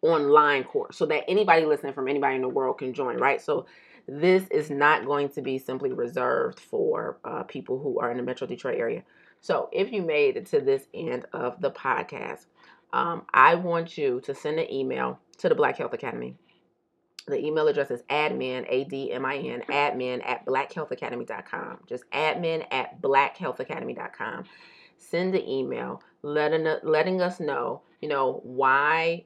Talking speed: 160 wpm